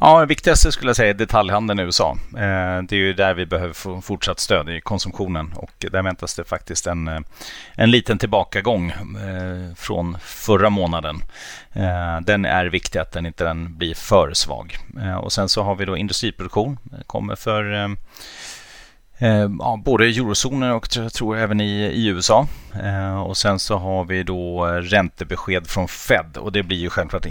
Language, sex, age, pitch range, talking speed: Swedish, male, 30-49, 85-105 Hz, 170 wpm